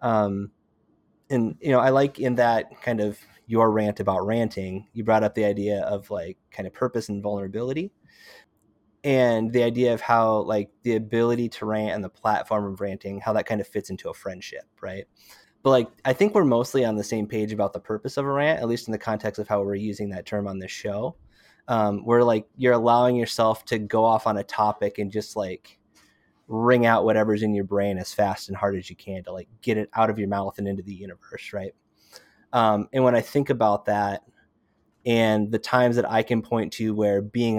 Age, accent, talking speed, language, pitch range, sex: 20-39, American, 220 wpm, English, 105-115 Hz, male